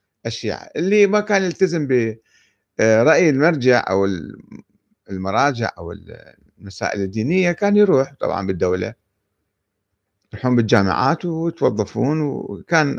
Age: 50-69